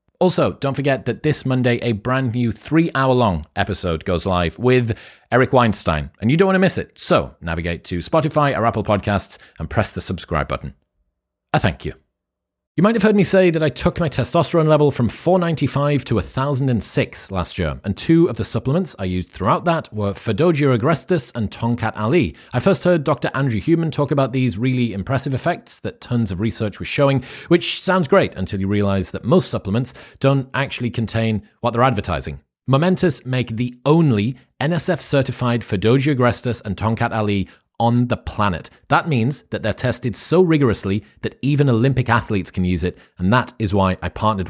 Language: English